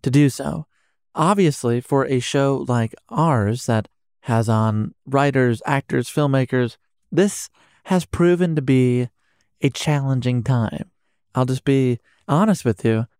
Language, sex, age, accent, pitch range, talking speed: English, male, 30-49, American, 115-145 Hz, 130 wpm